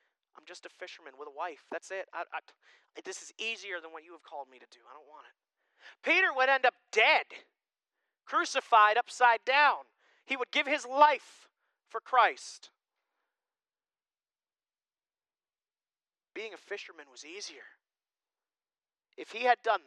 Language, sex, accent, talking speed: English, male, American, 145 wpm